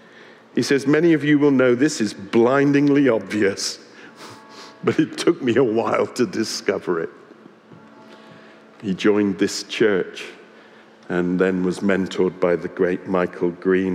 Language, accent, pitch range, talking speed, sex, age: English, British, 95-120 Hz, 140 wpm, male, 50-69